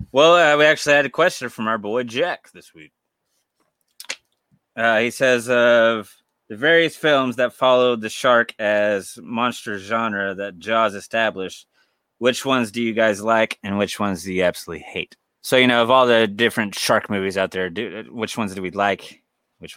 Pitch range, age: 105-135 Hz, 20-39